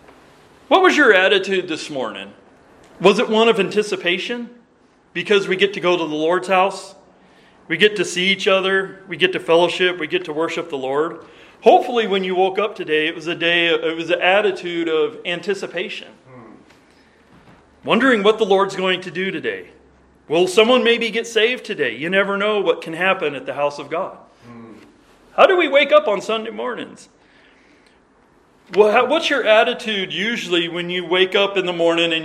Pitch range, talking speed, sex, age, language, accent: 170-210 Hz, 180 wpm, male, 40-59, English, American